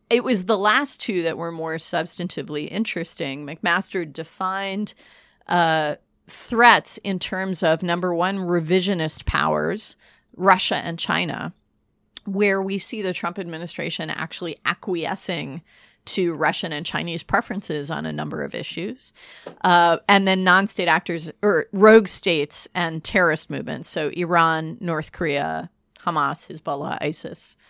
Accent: American